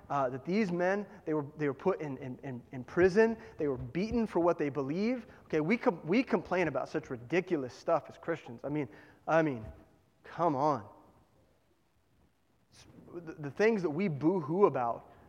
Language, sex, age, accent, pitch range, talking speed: English, male, 30-49, American, 140-205 Hz, 175 wpm